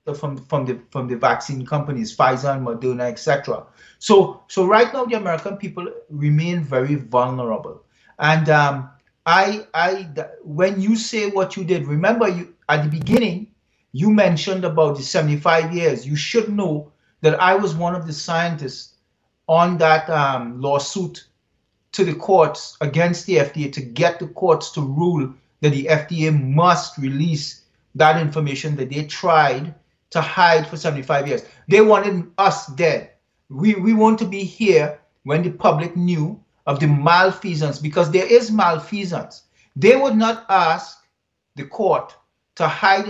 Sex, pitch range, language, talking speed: male, 145-190 Hz, English, 155 wpm